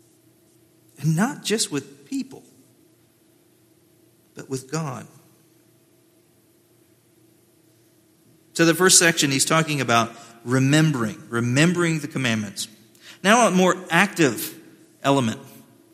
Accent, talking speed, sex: American, 90 wpm, male